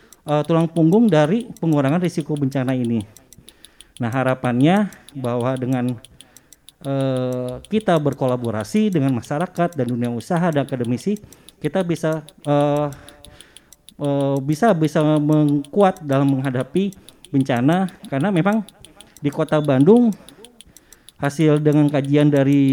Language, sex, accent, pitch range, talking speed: Indonesian, male, native, 130-165 Hz, 110 wpm